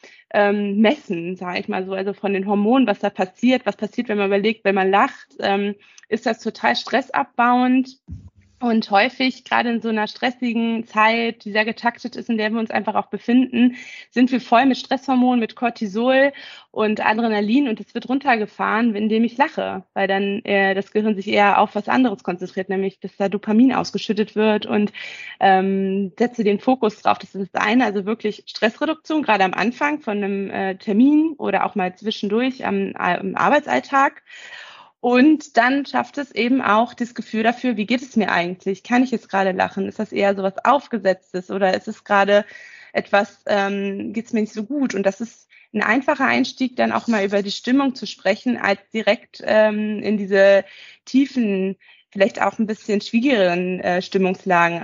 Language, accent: German, German